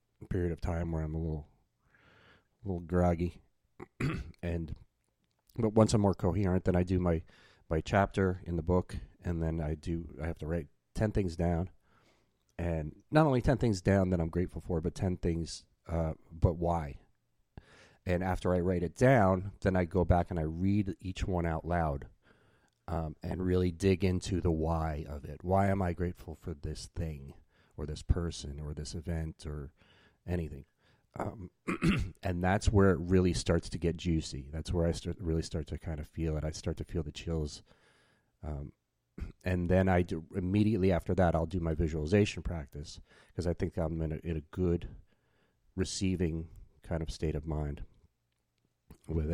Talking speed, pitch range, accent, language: 180 wpm, 80-95 Hz, American, English